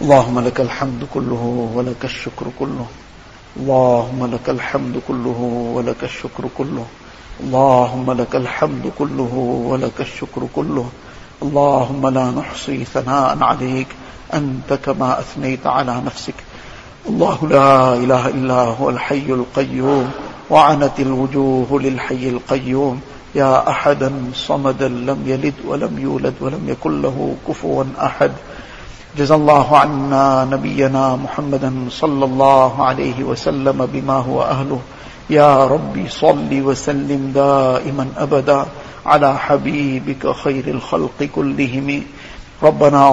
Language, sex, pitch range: English, male, 130-145 Hz